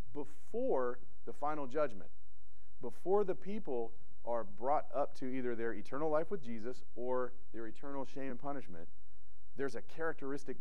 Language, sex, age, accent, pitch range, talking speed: English, male, 40-59, American, 95-125 Hz, 145 wpm